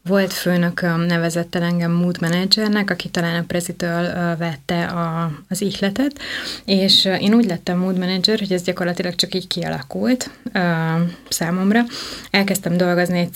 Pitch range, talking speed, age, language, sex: 170-190 Hz, 145 wpm, 20-39, Hungarian, female